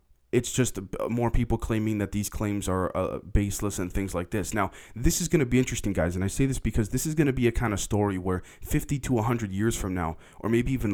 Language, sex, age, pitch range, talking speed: English, male, 20-39, 95-115 Hz, 260 wpm